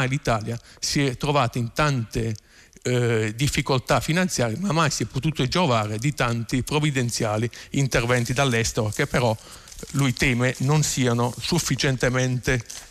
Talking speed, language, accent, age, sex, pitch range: 125 wpm, Italian, native, 50-69, male, 120-150 Hz